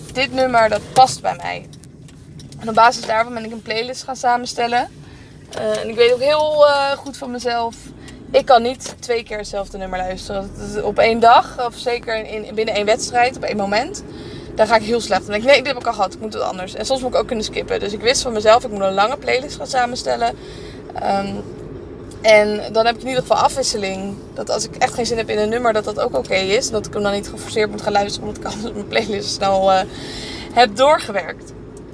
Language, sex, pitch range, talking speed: Dutch, female, 210-245 Hz, 245 wpm